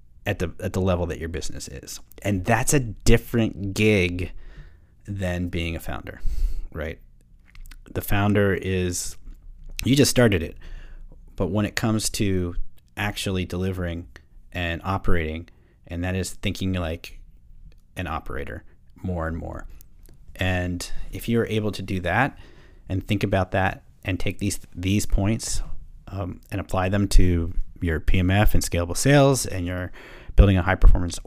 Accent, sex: American, male